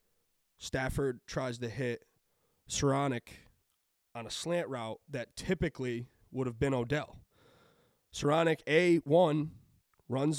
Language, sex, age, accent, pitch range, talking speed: English, male, 20-39, American, 130-175 Hz, 105 wpm